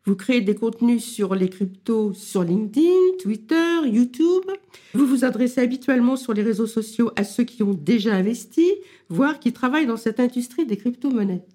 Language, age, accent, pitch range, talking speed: French, 50-69, French, 205-270 Hz, 170 wpm